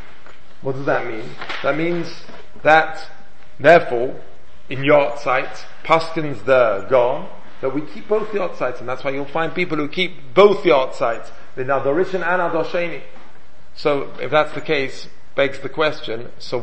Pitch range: 130-170 Hz